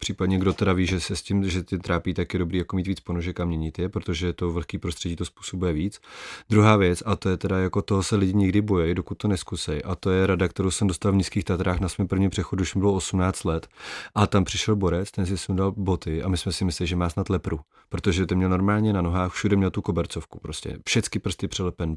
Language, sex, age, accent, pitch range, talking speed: Czech, male, 30-49, native, 90-100 Hz, 255 wpm